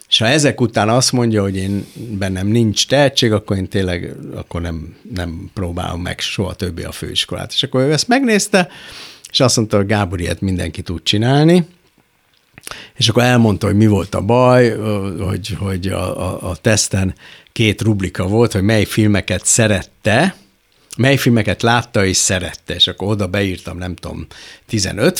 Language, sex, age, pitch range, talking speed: Hungarian, male, 60-79, 95-120 Hz, 165 wpm